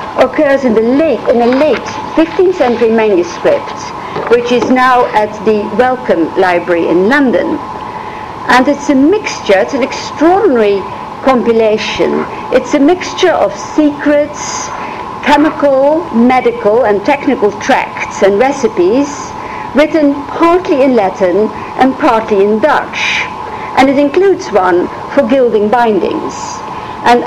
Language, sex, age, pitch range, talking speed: English, female, 50-69, 220-310 Hz, 120 wpm